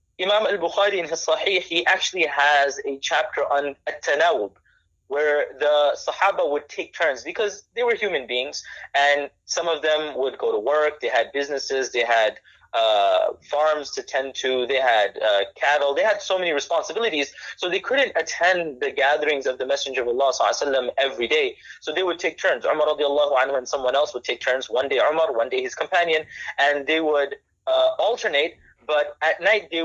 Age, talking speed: 30-49, 195 wpm